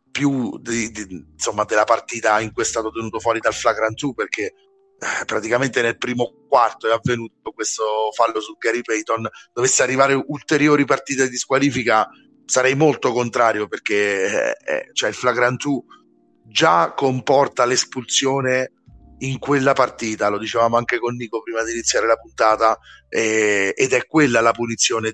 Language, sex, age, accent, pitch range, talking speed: Italian, male, 30-49, native, 110-145 Hz, 155 wpm